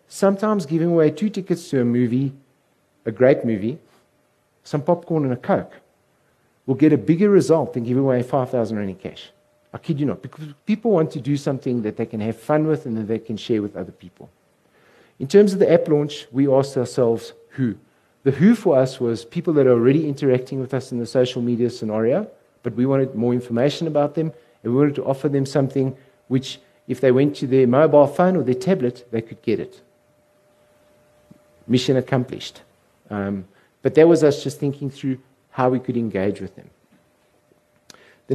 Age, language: 50-69, English